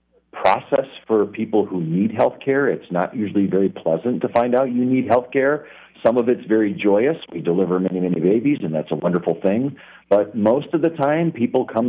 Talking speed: 205 wpm